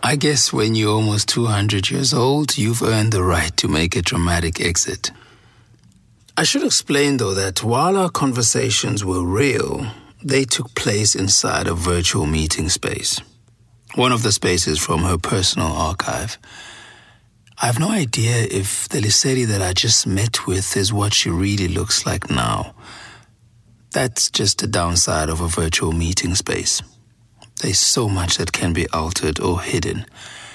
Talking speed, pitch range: 155 wpm, 95-125 Hz